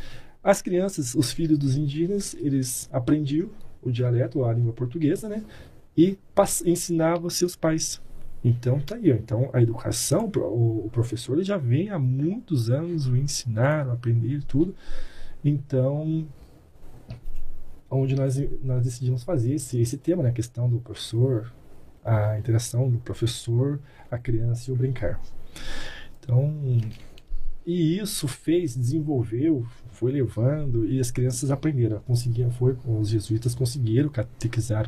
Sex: male